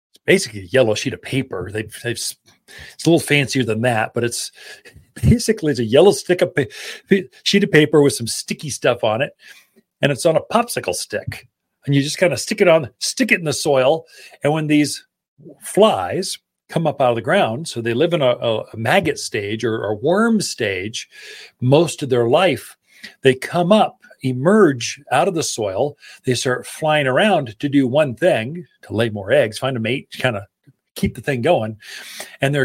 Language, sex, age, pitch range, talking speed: English, male, 40-59, 130-195 Hz, 200 wpm